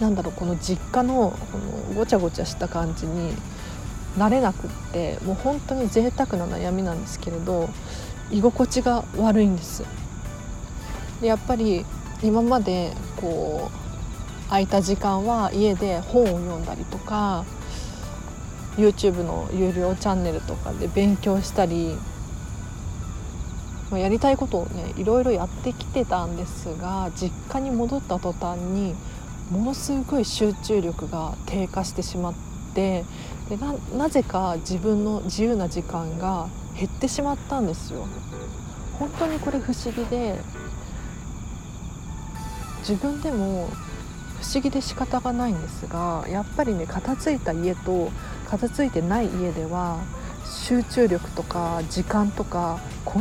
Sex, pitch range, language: female, 170-235 Hz, Japanese